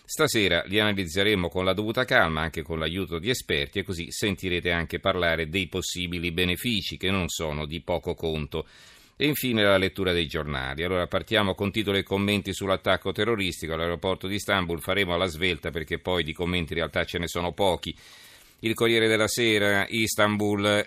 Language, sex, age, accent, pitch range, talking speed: Italian, male, 40-59, native, 85-95 Hz, 175 wpm